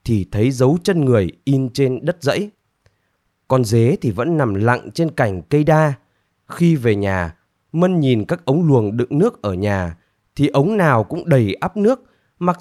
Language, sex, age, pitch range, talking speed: Vietnamese, male, 20-39, 105-165 Hz, 185 wpm